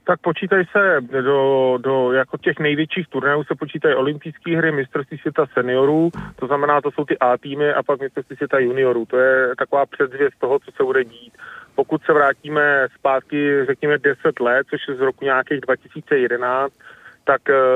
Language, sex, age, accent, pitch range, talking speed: Czech, male, 30-49, native, 135-160 Hz, 170 wpm